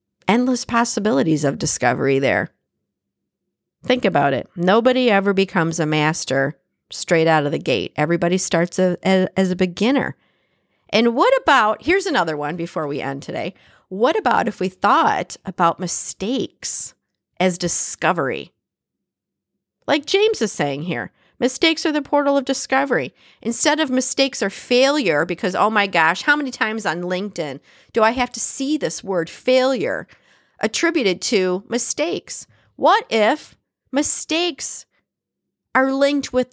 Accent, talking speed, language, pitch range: American, 140 wpm, English, 180-265 Hz